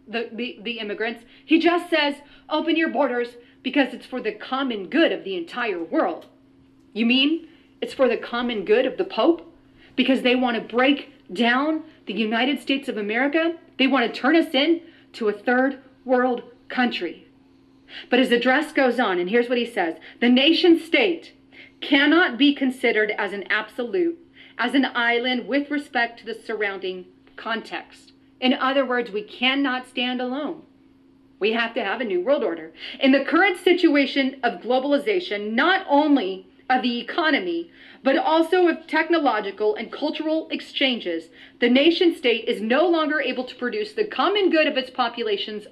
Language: English